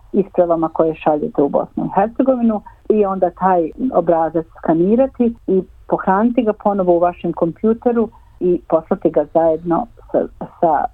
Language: Croatian